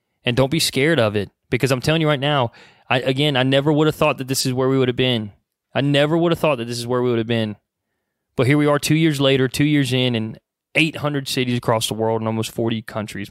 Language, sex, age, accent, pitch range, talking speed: English, male, 20-39, American, 110-140 Hz, 270 wpm